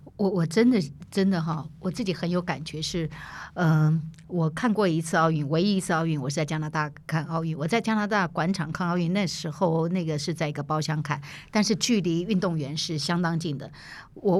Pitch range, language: 155-200 Hz, Chinese